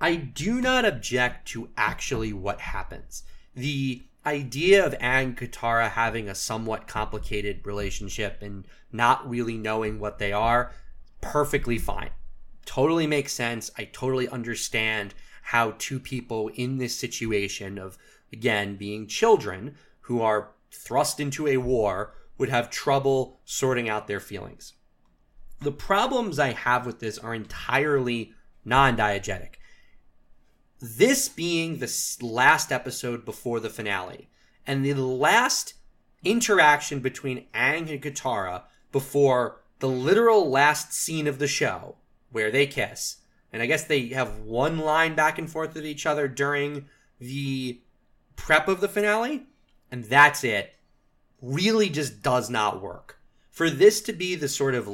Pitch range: 110-145 Hz